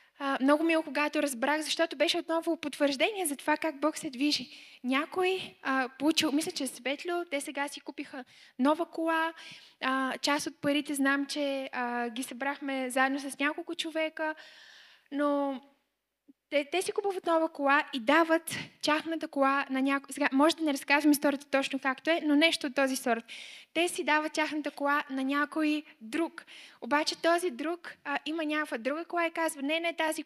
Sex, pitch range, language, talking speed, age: female, 275-325 Hz, Bulgarian, 175 wpm, 10-29